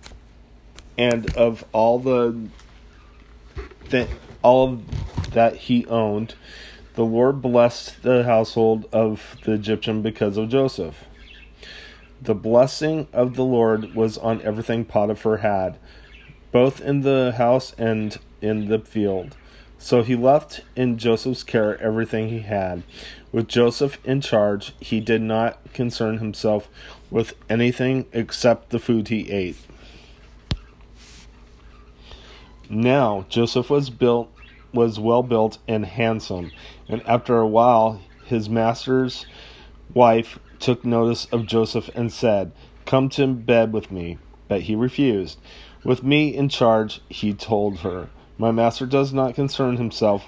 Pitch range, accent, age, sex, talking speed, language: 105-125 Hz, American, 30-49, male, 130 wpm, English